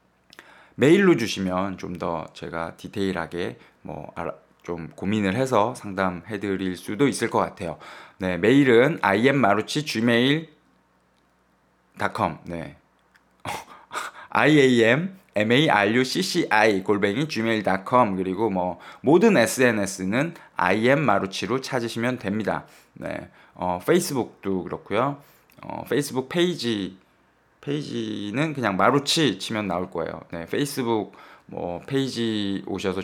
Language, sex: Korean, male